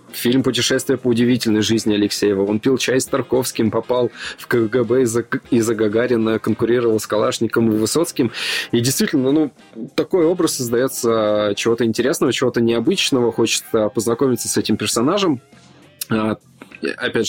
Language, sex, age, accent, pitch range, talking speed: Russian, male, 20-39, native, 105-130 Hz, 130 wpm